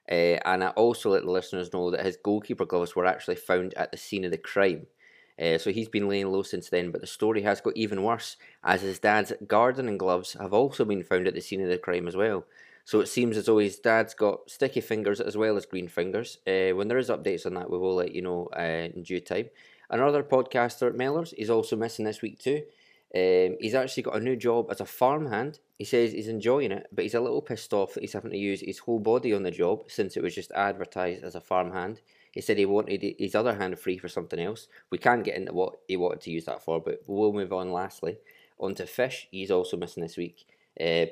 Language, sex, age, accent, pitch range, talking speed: English, male, 20-39, British, 90-110 Hz, 245 wpm